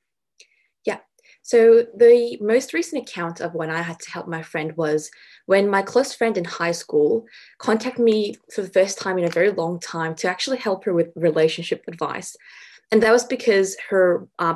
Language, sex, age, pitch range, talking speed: English, female, 20-39, 170-235 Hz, 185 wpm